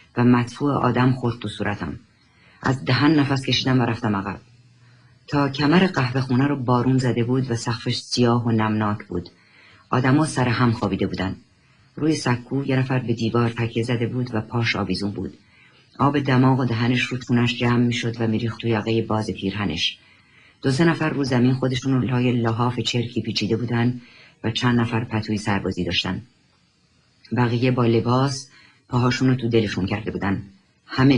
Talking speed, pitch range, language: 165 wpm, 110-125 Hz, Persian